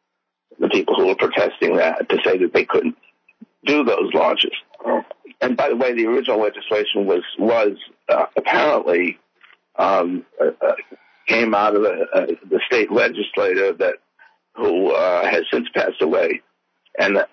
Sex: male